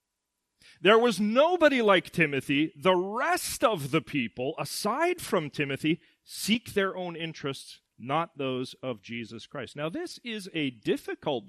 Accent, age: American, 40-59